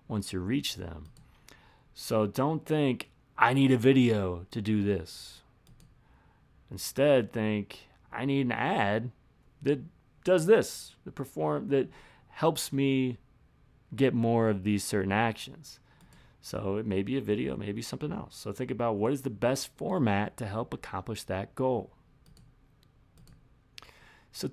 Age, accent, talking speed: 30-49, American, 140 wpm